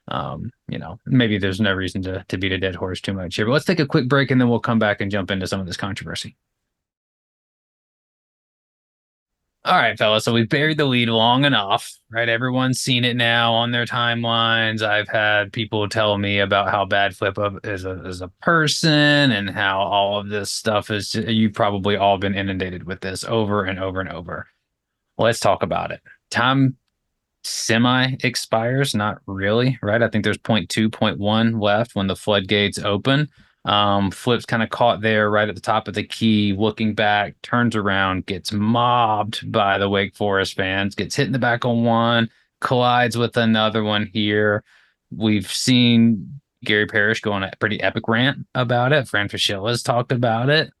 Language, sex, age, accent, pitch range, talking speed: English, male, 20-39, American, 100-120 Hz, 190 wpm